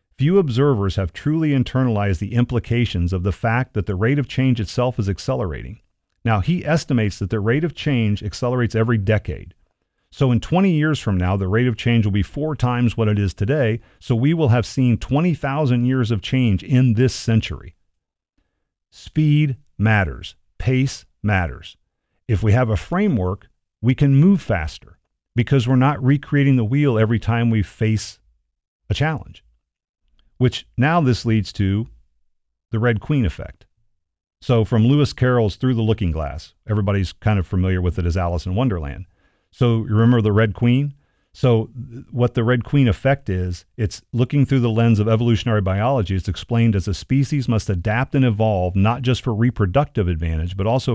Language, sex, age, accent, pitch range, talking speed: English, male, 40-59, American, 100-130 Hz, 175 wpm